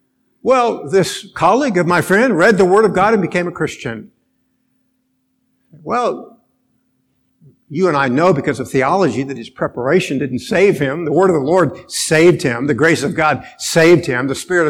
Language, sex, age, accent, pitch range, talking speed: English, male, 50-69, American, 140-185 Hz, 180 wpm